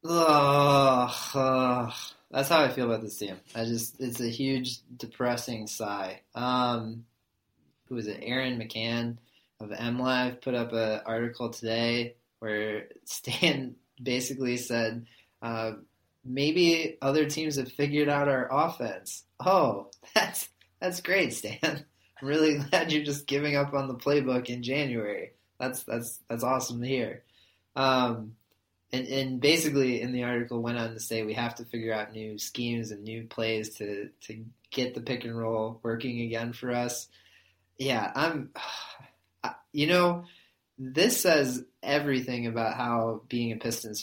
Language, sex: English, male